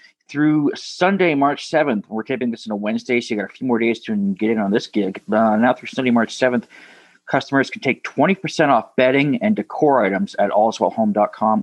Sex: male